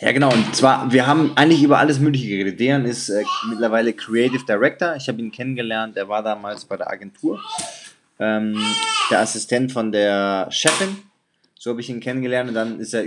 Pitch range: 110-130 Hz